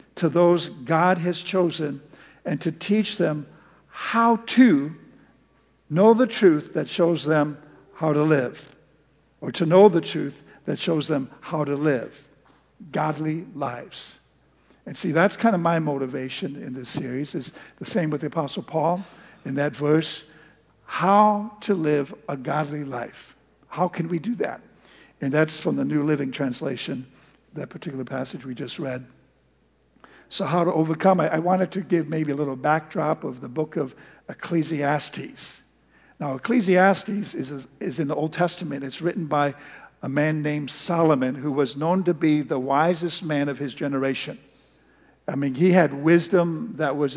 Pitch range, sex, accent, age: 145-175 Hz, male, American, 60-79